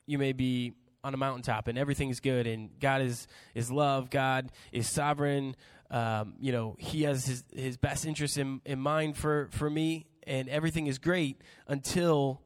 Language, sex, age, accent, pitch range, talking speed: English, male, 20-39, American, 130-150 Hz, 180 wpm